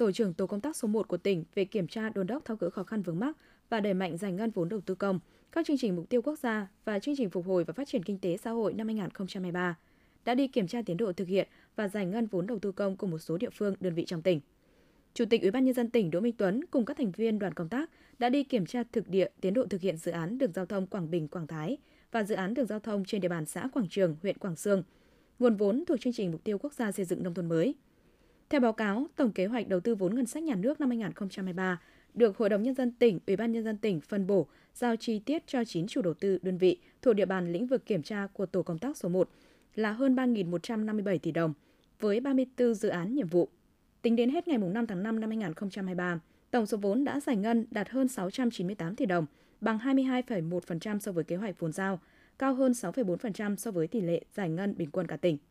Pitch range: 185-240 Hz